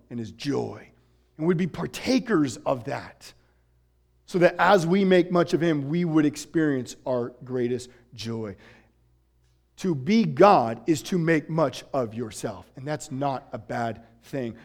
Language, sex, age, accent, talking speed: English, male, 40-59, American, 155 wpm